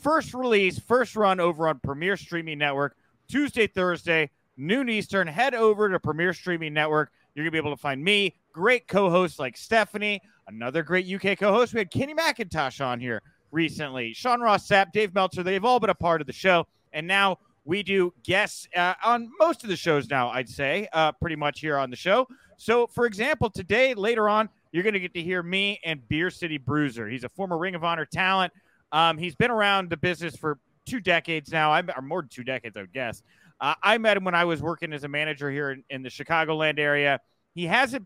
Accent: American